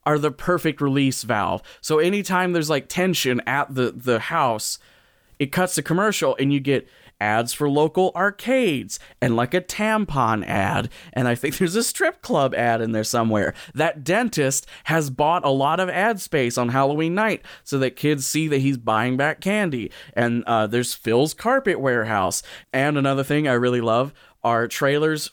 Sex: male